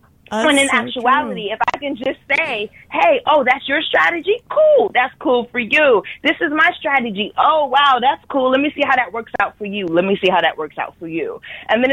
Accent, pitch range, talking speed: American, 195-275 Hz, 230 wpm